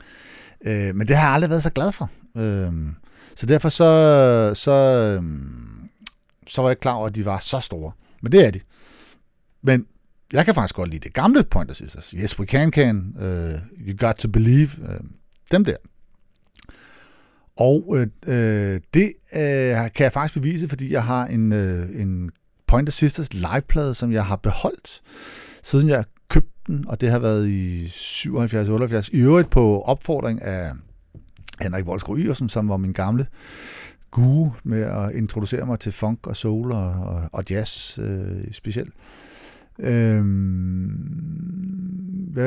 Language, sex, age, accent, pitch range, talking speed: Danish, male, 60-79, native, 95-135 Hz, 140 wpm